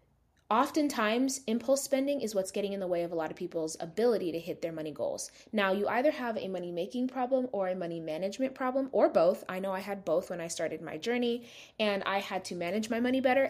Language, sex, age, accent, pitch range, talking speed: English, female, 20-39, American, 185-240 Hz, 235 wpm